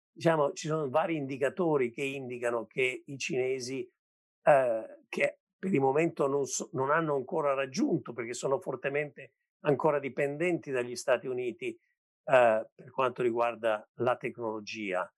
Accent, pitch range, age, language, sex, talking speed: native, 125-180 Hz, 50-69, Italian, male, 140 wpm